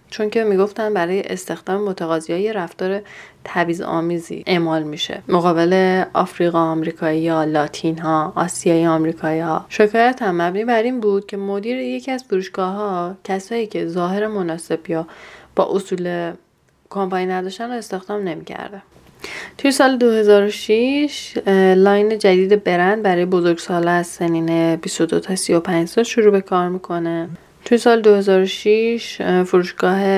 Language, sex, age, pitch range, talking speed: Persian, female, 10-29, 170-210 Hz, 135 wpm